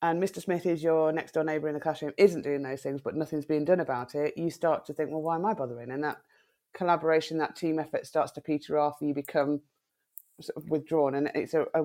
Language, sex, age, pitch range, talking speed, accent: English, female, 30-49, 145-160 Hz, 255 wpm, British